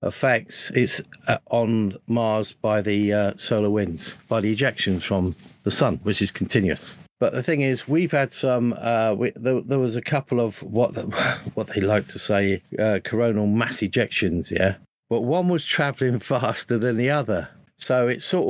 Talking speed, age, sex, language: 180 wpm, 50-69, male, English